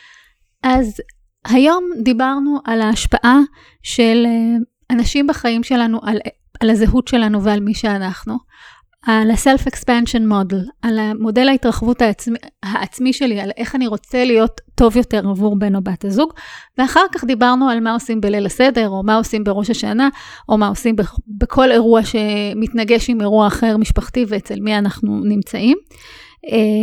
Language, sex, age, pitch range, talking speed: English, female, 30-49, 215-255 Hz, 145 wpm